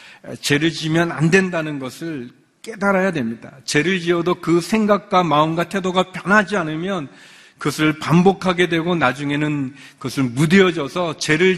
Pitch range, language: 135-185 Hz, Korean